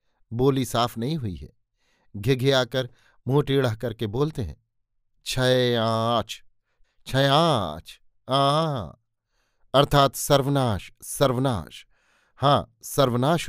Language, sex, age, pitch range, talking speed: Hindi, male, 50-69, 115-140 Hz, 85 wpm